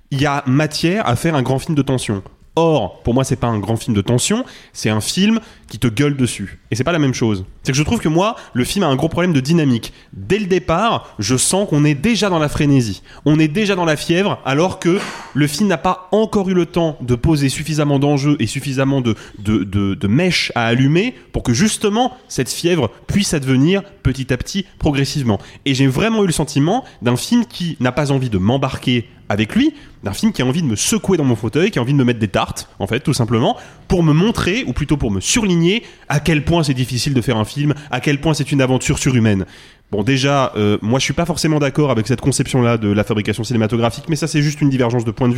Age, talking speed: 20-39, 250 wpm